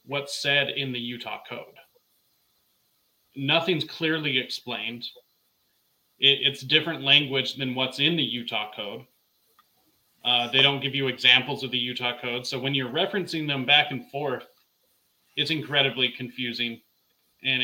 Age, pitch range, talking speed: 30-49, 125-150 Hz, 135 wpm